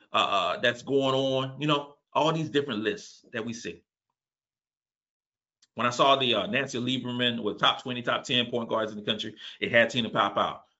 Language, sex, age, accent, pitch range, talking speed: English, male, 40-59, American, 120-175 Hz, 200 wpm